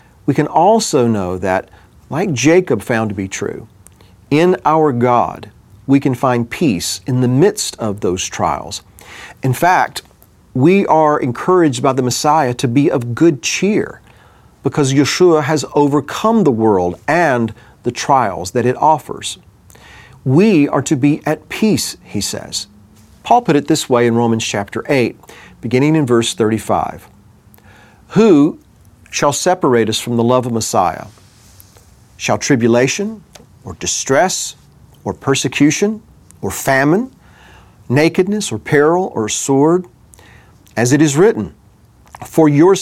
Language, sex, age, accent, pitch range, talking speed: English, male, 40-59, American, 110-155 Hz, 135 wpm